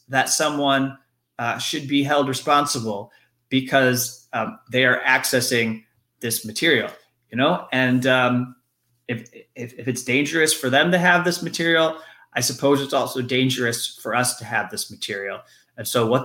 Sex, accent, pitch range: male, American, 120-140 Hz